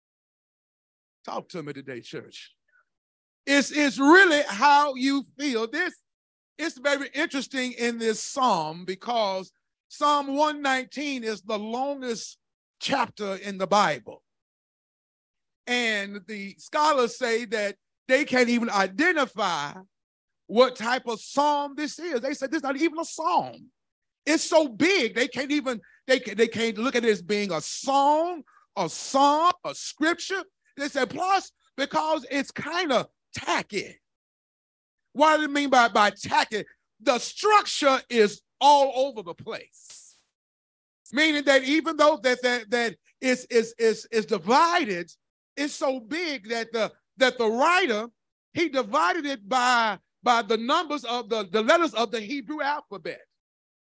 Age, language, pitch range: 30-49, English, 225-300 Hz